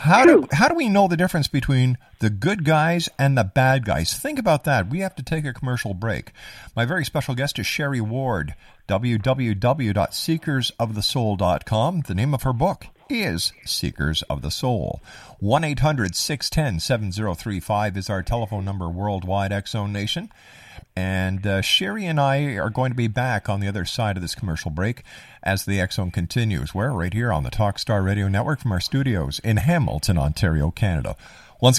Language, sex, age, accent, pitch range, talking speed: English, male, 50-69, American, 95-130 Hz, 175 wpm